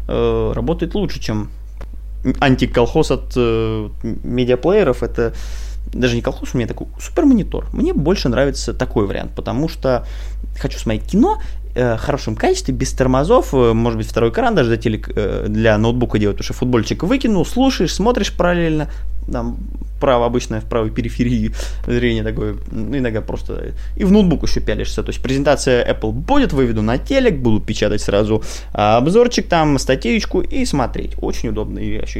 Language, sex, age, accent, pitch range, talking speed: Russian, male, 20-39, native, 115-155 Hz, 160 wpm